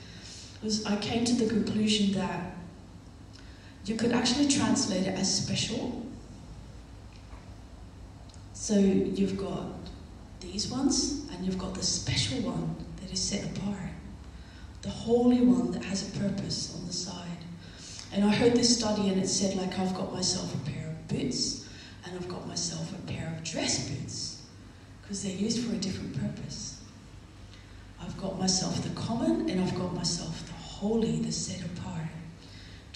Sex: female